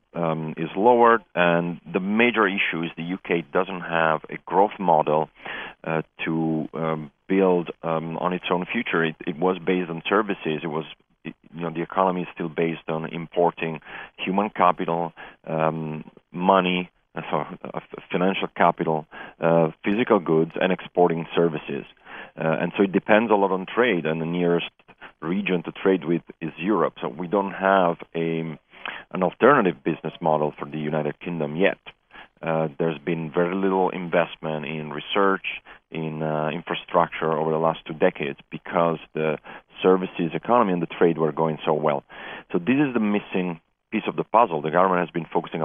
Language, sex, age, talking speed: English, male, 40-59, 175 wpm